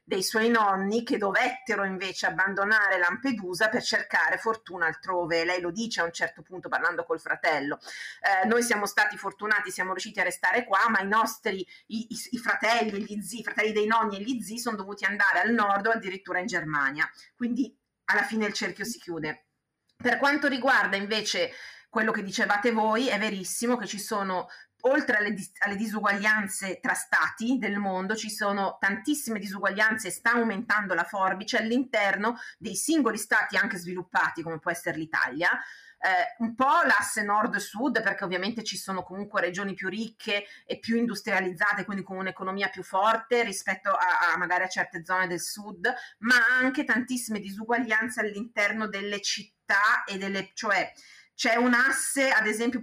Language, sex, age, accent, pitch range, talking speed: Italian, female, 30-49, native, 190-230 Hz, 170 wpm